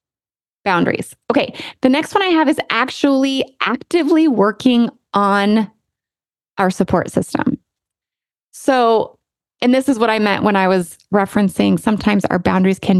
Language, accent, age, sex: English, American, 20-39, female